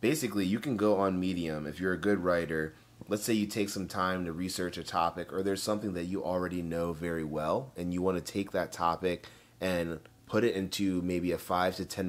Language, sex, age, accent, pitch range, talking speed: English, male, 30-49, American, 80-100 Hz, 225 wpm